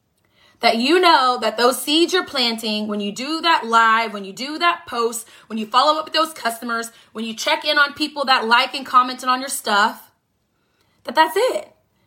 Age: 20-39